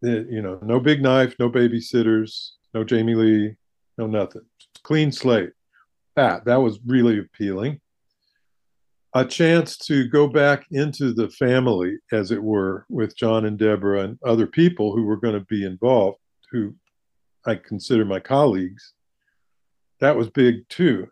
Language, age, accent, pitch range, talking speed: English, 50-69, American, 105-130 Hz, 150 wpm